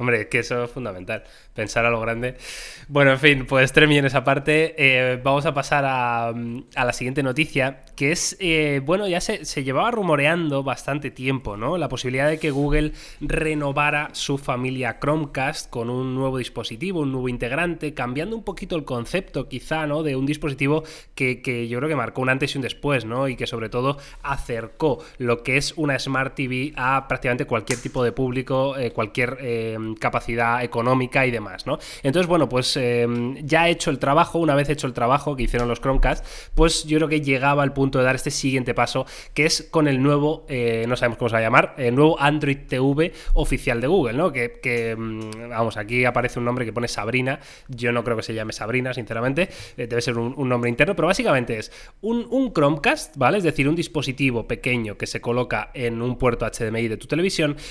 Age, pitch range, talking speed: 20-39, 120-150 Hz, 205 wpm